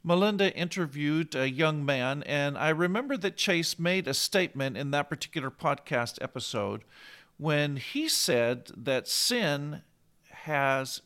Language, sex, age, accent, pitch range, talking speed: English, male, 50-69, American, 140-180 Hz, 130 wpm